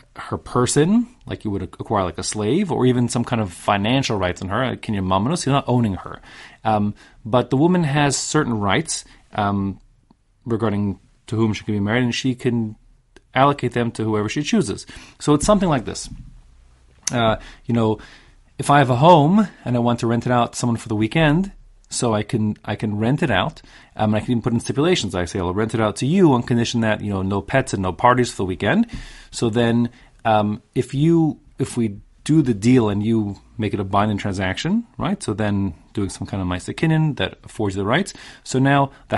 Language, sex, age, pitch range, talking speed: English, male, 30-49, 105-135 Hz, 225 wpm